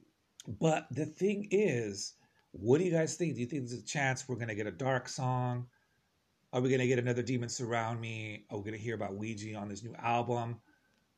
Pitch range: 120-160 Hz